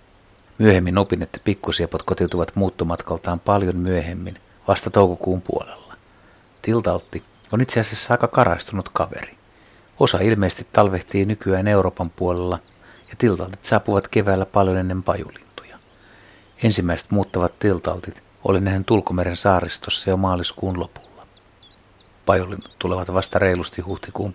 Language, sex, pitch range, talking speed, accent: Finnish, male, 90-105 Hz, 115 wpm, native